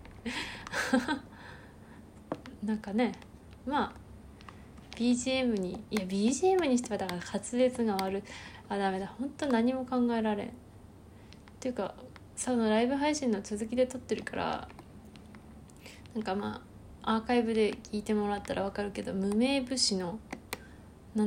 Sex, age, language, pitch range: female, 20-39, Japanese, 195-250 Hz